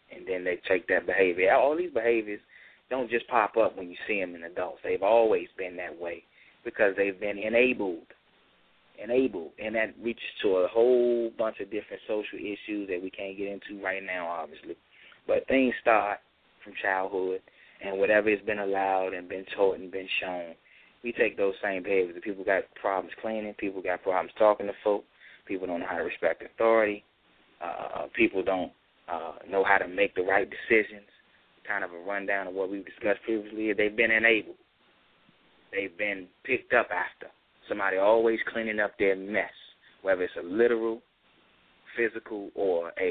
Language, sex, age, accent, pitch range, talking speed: English, male, 20-39, American, 95-115 Hz, 175 wpm